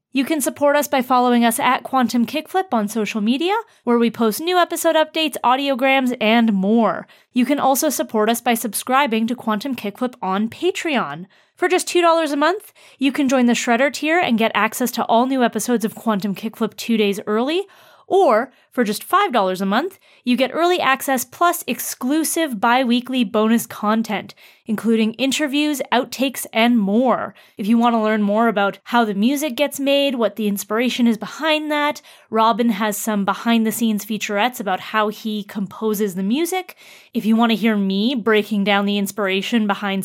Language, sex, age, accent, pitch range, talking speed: English, female, 20-39, American, 215-290 Hz, 175 wpm